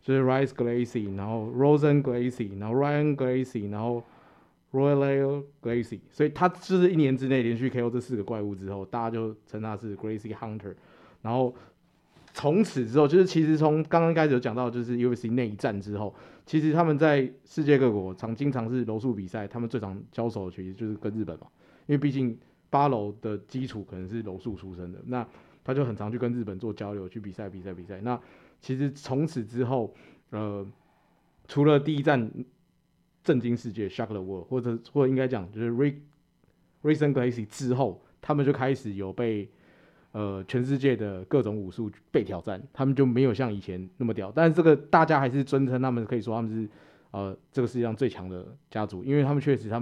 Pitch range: 105-140 Hz